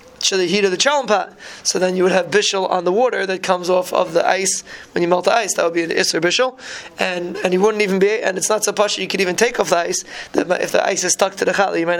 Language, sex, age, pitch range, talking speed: English, male, 20-39, 190-225 Hz, 305 wpm